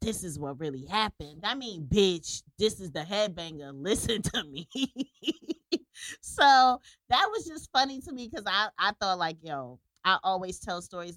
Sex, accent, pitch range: female, American, 150-200 Hz